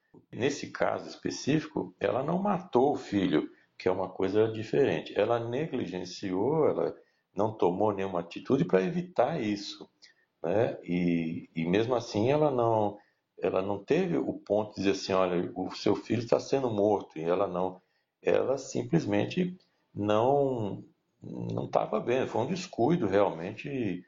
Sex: male